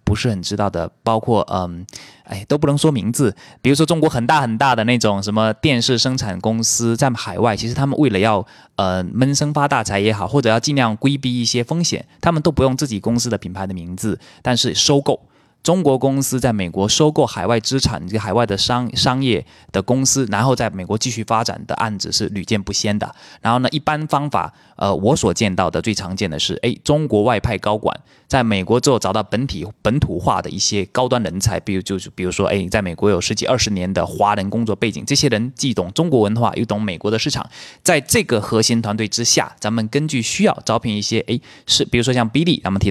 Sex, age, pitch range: male, 20-39, 105-130 Hz